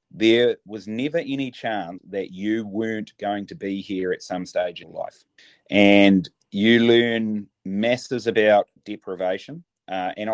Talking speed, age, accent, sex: 145 wpm, 30-49, Australian, male